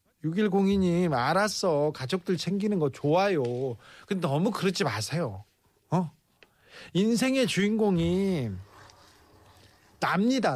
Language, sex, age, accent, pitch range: Korean, male, 40-59, native, 125-200 Hz